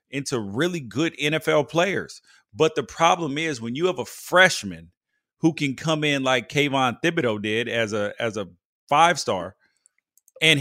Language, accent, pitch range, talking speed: English, American, 125-170 Hz, 165 wpm